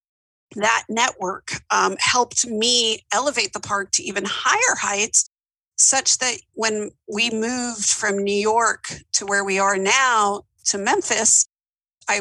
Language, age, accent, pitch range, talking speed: English, 50-69, American, 200-230 Hz, 140 wpm